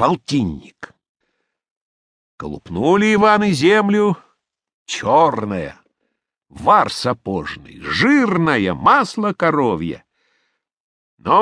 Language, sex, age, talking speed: English, male, 60-79, 65 wpm